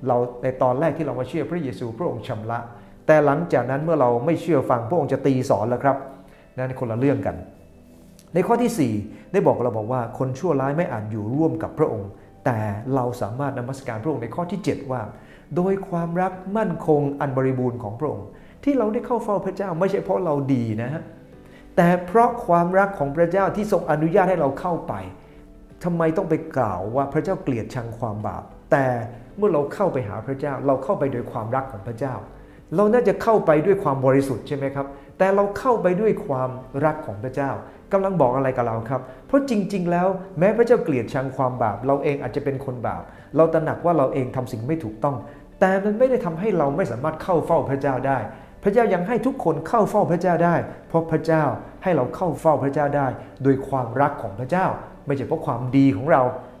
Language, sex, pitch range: English, male, 125-175 Hz